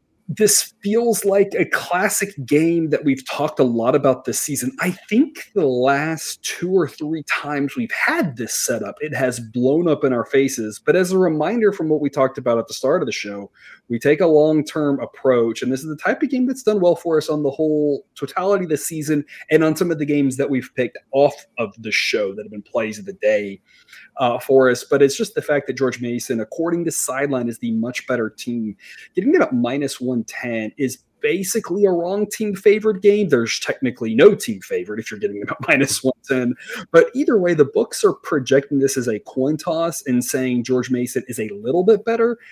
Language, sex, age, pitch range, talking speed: English, male, 30-49, 125-170 Hz, 220 wpm